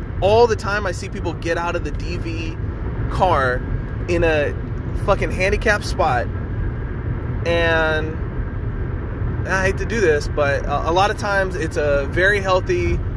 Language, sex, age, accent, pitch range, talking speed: English, male, 20-39, American, 100-140 Hz, 155 wpm